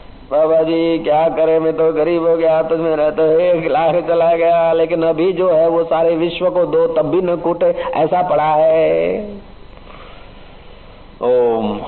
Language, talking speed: Hindi, 165 wpm